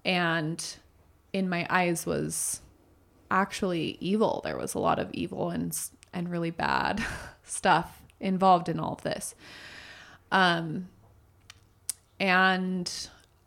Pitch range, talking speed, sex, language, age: 140-195 Hz, 110 wpm, female, English, 20-39